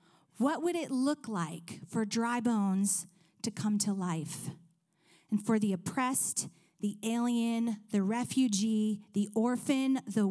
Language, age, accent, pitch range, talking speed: English, 30-49, American, 175-225 Hz, 135 wpm